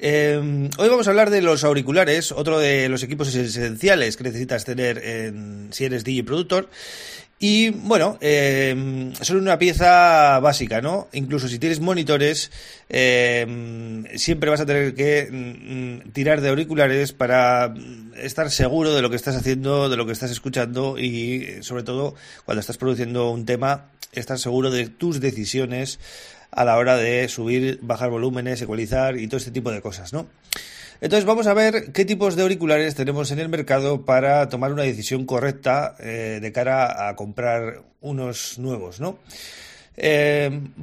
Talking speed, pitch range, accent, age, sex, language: 160 wpm, 125-165 Hz, Spanish, 30-49, male, Spanish